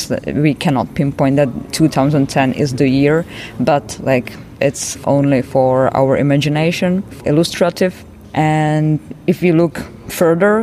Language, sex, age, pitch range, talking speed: English, female, 20-39, 140-155 Hz, 120 wpm